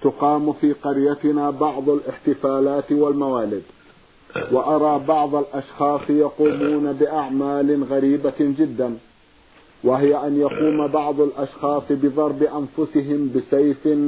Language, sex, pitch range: Arabic, male, 135-155 Hz